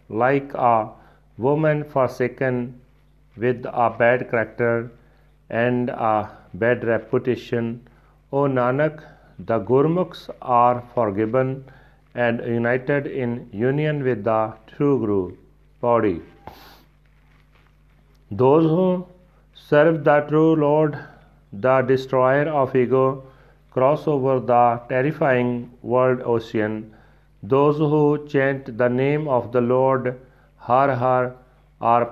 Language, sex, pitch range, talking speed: Punjabi, male, 120-145 Hz, 105 wpm